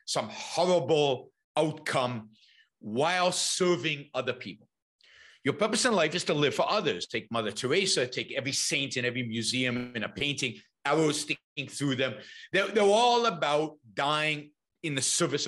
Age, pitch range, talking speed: 50-69, 140-220 Hz, 155 wpm